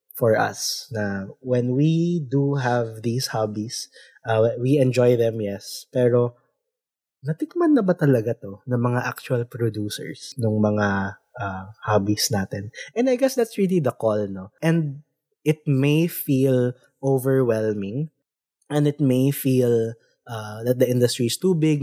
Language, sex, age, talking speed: Filipino, male, 20-39, 145 wpm